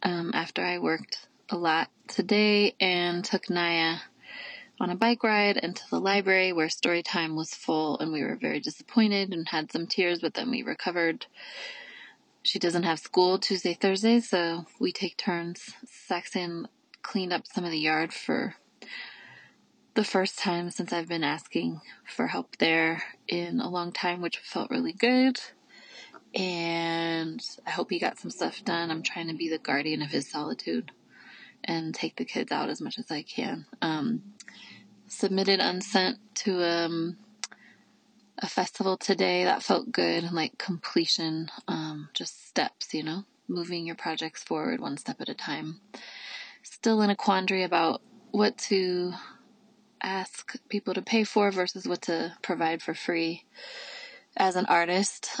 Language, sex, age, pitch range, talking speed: English, female, 20-39, 165-215 Hz, 160 wpm